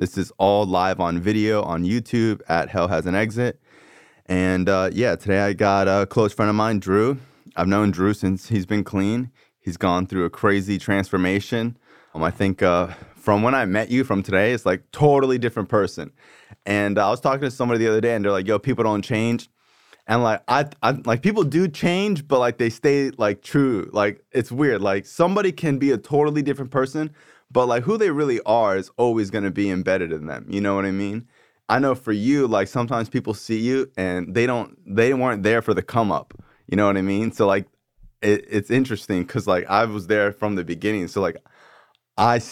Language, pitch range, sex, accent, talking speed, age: English, 95-120 Hz, male, American, 215 wpm, 20-39